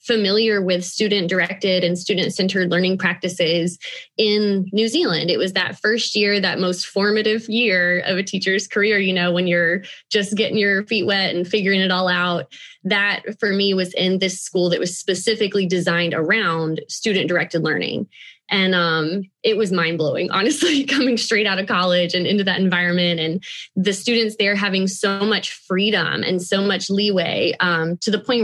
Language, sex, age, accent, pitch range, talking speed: English, female, 20-39, American, 180-215 Hz, 175 wpm